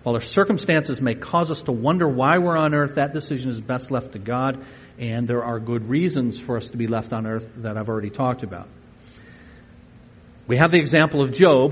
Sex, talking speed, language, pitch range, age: male, 215 wpm, English, 120-155 Hz, 50-69